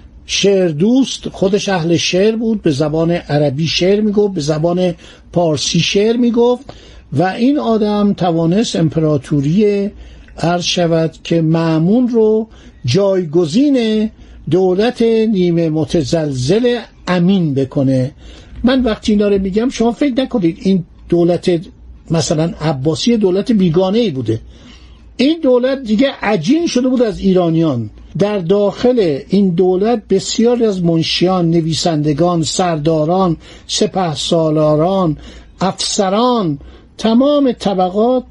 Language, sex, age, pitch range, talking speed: Persian, male, 60-79, 165-225 Hz, 110 wpm